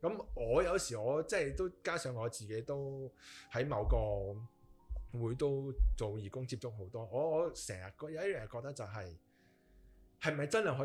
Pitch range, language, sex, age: 100-135 Hz, Chinese, male, 20-39